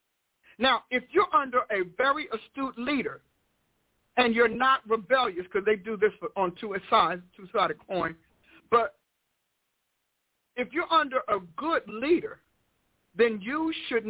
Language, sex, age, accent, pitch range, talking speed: English, male, 50-69, American, 220-270 Hz, 130 wpm